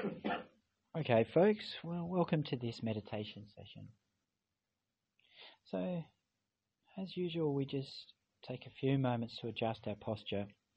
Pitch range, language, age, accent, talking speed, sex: 105-130 Hz, English, 40-59, Australian, 115 wpm, male